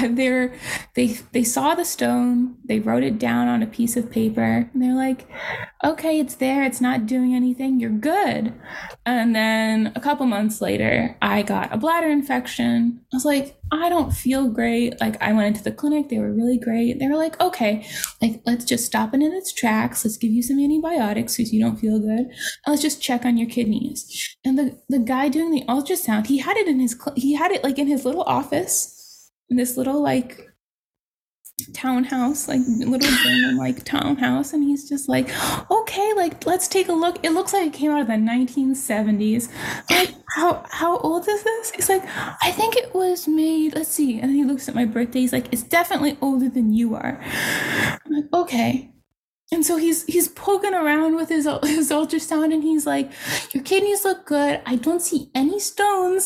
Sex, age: female, 10-29